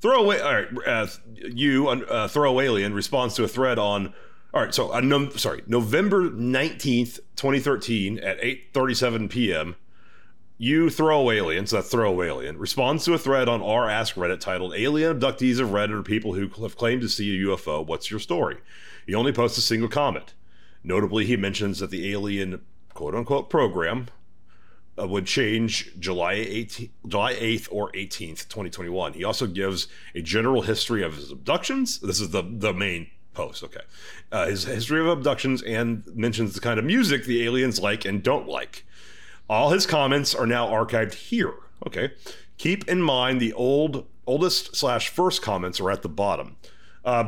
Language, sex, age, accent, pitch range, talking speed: English, male, 30-49, American, 100-130 Hz, 175 wpm